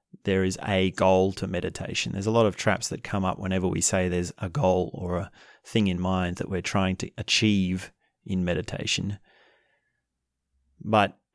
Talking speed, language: 175 wpm, English